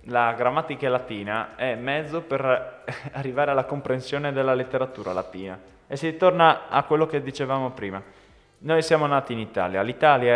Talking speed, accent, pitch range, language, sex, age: 150 wpm, native, 110-155 Hz, Italian, male, 20-39